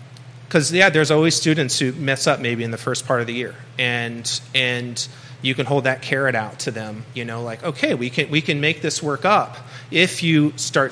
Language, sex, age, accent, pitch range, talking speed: English, male, 30-49, American, 125-150 Hz, 225 wpm